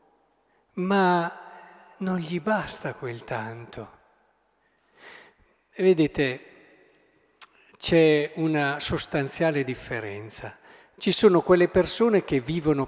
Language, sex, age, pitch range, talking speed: Italian, male, 50-69, 140-190 Hz, 80 wpm